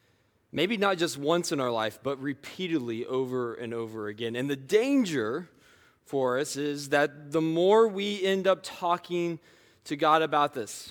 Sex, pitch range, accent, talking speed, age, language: male, 130-175 Hz, American, 165 wpm, 20-39, English